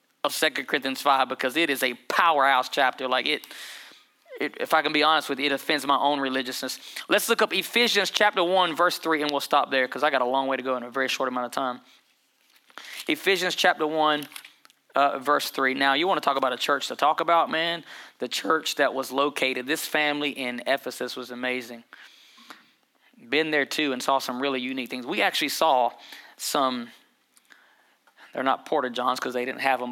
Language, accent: English, American